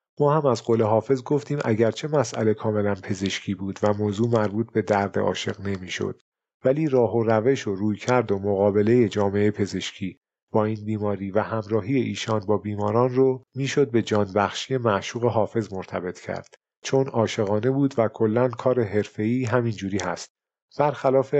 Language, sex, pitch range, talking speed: Persian, male, 105-125 Hz, 155 wpm